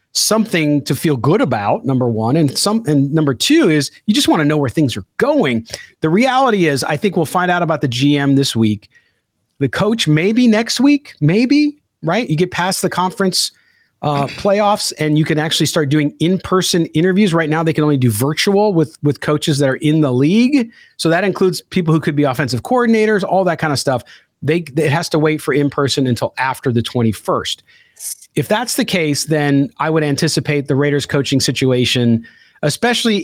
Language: English